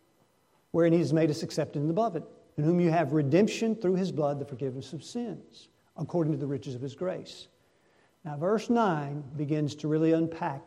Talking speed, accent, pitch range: 195 wpm, American, 155-200 Hz